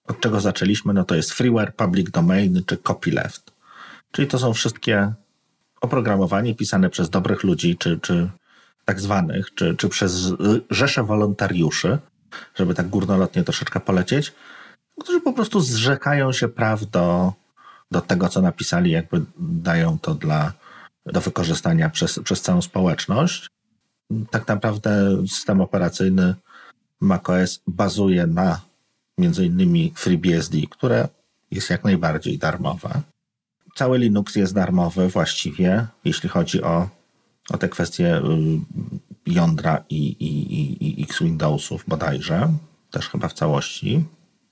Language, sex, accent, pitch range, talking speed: Polish, male, native, 95-160 Hz, 120 wpm